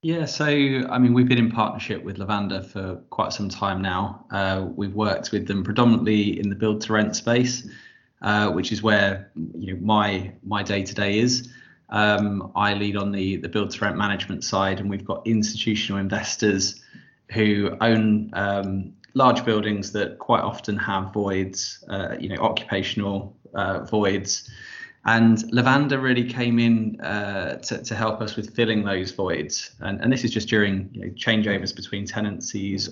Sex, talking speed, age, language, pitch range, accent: male, 165 wpm, 20-39, English, 100-115 Hz, British